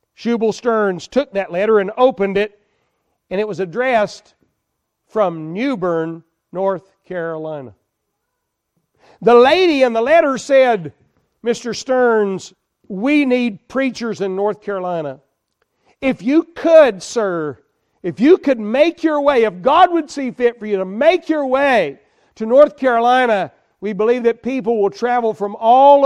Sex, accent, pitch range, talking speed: male, American, 190-240 Hz, 145 wpm